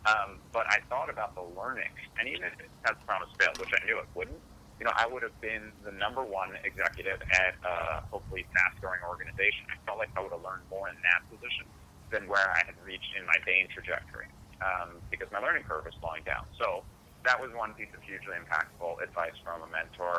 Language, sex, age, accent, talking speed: English, male, 30-49, American, 220 wpm